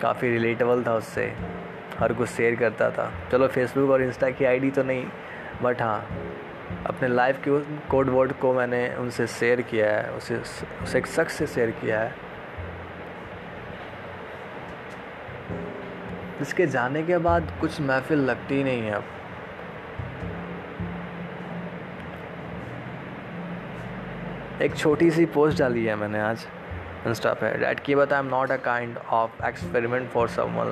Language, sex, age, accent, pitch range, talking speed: Hindi, male, 20-39, native, 115-145 Hz, 130 wpm